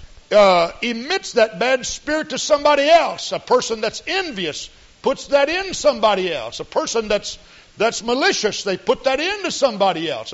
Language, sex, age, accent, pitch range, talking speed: English, male, 60-79, American, 205-310 Hz, 165 wpm